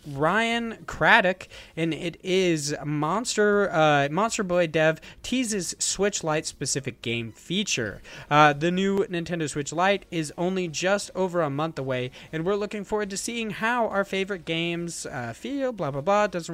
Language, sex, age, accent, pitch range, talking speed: English, male, 20-39, American, 160-205 Hz, 160 wpm